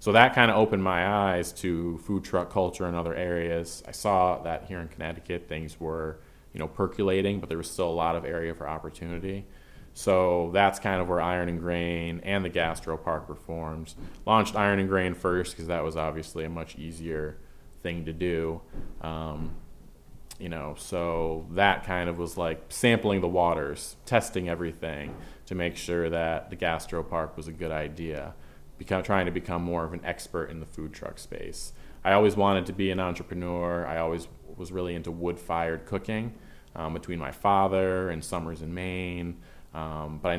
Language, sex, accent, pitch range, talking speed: English, male, American, 80-90 Hz, 185 wpm